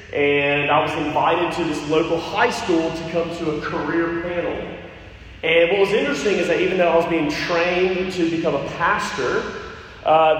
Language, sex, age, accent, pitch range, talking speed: English, male, 30-49, American, 155-195 Hz, 185 wpm